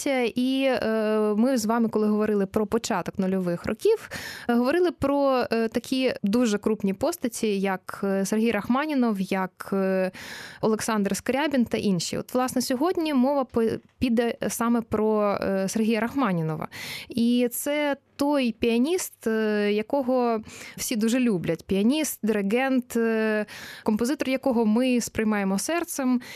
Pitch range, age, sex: 210-255 Hz, 20-39, female